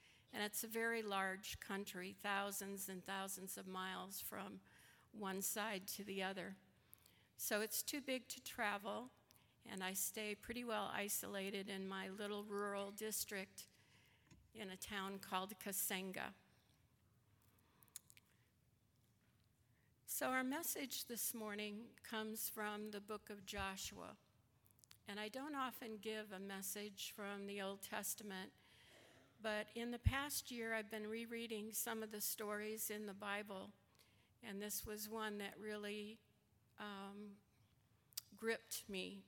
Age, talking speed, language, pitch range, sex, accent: 60-79, 130 wpm, English, 135-215 Hz, female, American